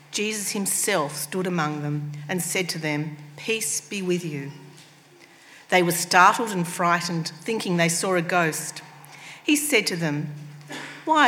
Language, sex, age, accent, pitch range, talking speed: English, female, 50-69, Australian, 155-200 Hz, 150 wpm